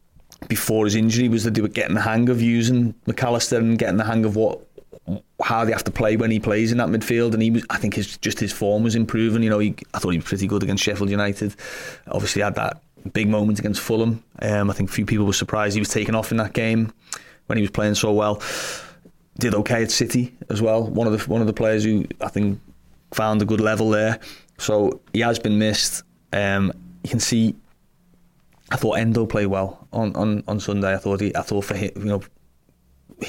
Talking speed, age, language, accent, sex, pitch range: 230 wpm, 20-39, English, British, male, 100-115 Hz